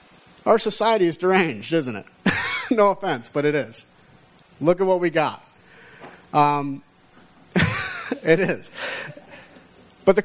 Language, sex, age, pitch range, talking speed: English, male, 30-49, 120-170 Hz, 125 wpm